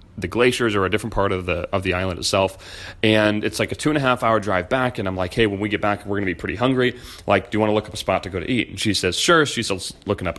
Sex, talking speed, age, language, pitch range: male, 325 wpm, 30-49, English, 100-130 Hz